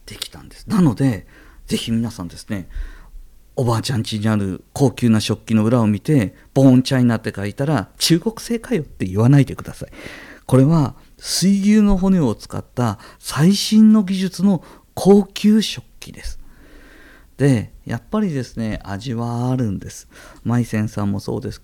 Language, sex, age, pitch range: Japanese, male, 50-69, 105-150 Hz